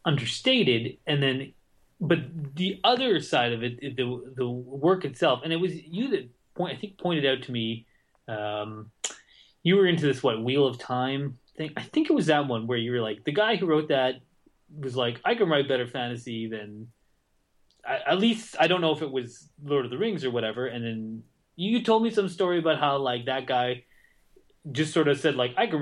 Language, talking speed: English, 210 wpm